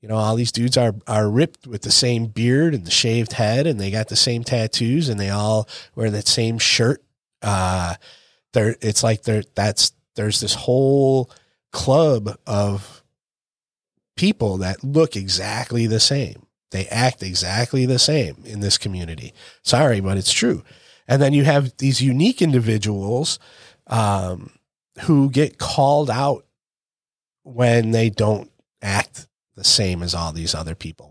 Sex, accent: male, American